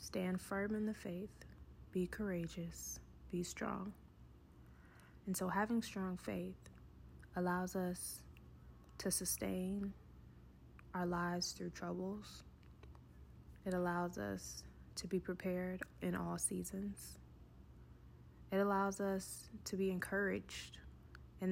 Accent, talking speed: American, 105 wpm